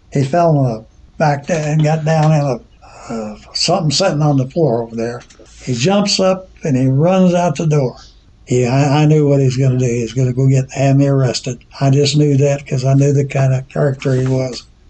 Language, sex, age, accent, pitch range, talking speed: English, male, 60-79, American, 125-150 Hz, 235 wpm